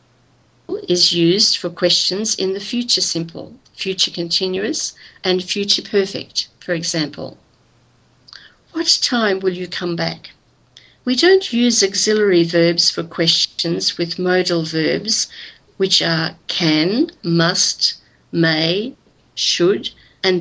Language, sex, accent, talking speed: English, female, Australian, 110 wpm